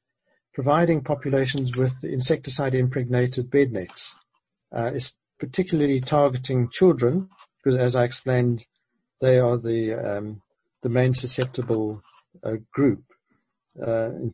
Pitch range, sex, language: 120-145 Hz, male, English